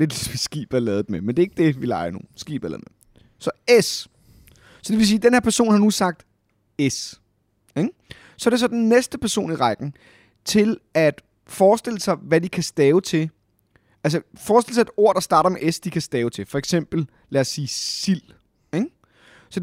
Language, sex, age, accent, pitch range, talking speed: Danish, male, 30-49, native, 135-195 Hz, 205 wpm